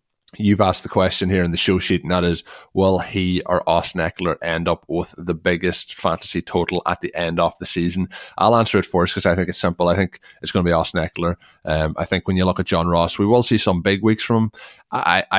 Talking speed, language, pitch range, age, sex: 250 wpm, English, 85-95 Hz, 20-39, male